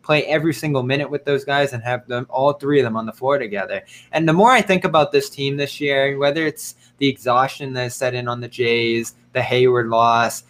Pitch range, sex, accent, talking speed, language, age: 115-140 Hz, male, American, 240 wpm, English, 20-39